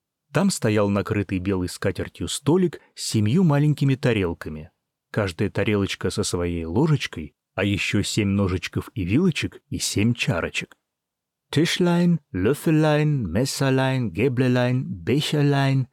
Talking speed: 110 wpm